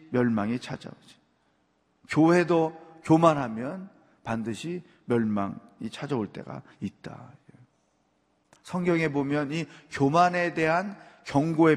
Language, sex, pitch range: Korean, male, 115-155 Hz